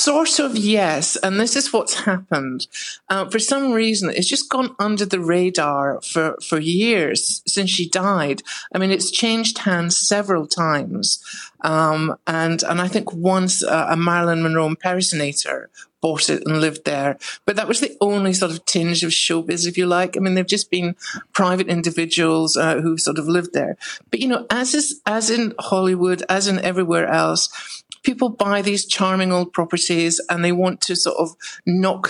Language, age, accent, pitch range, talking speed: English, 50-69, British, 165-200 Hz, 185 wpm